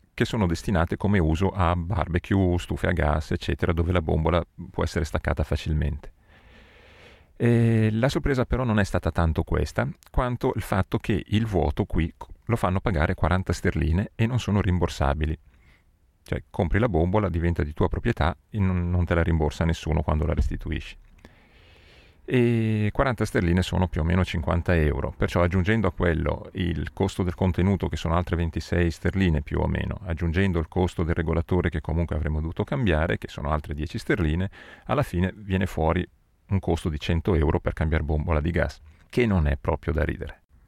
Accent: native